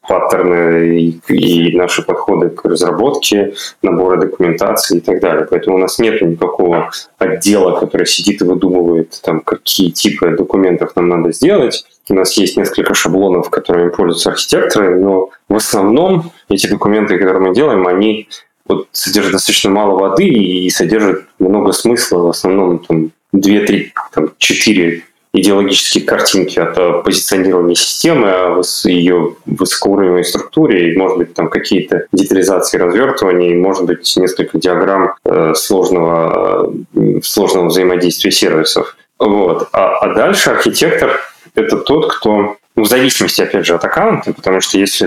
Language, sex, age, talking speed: Russian, male, 20-39, 140 wpm